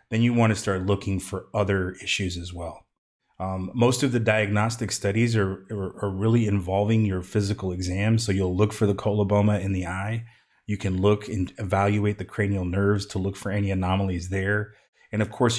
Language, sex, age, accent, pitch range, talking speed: English, male, 30-49, American, 95-110 Hz, 195 wpm